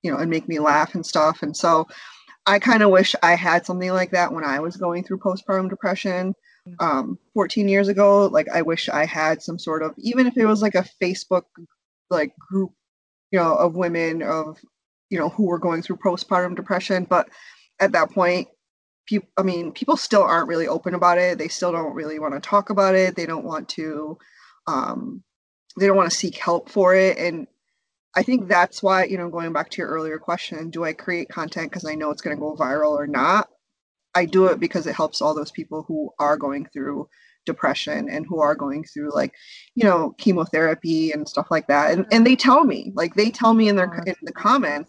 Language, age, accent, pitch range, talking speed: English, 20-39, American, 160-190 Hz, 220 wpm